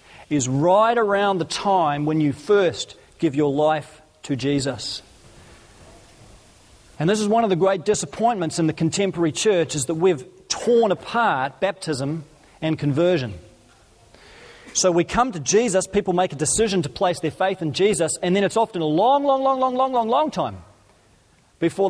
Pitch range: 160-215 Hz